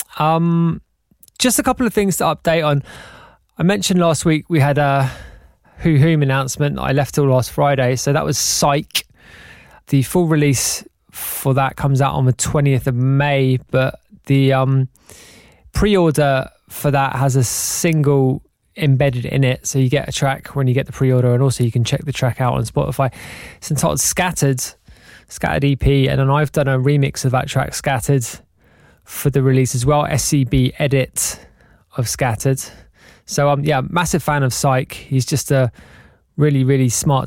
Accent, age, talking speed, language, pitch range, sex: British, 20-39, 175 wpm, English, 130-155 Hz, male